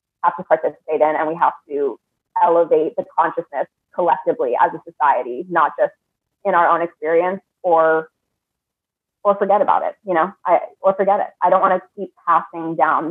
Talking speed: 180 wpm